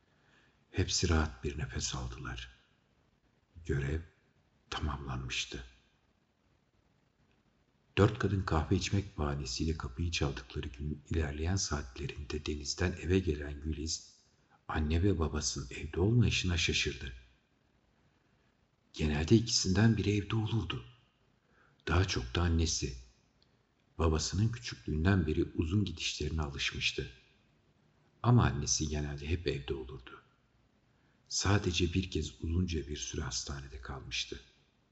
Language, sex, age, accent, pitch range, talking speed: Turkish, male, 60-79, native, 75-95 Hz, 95 wpm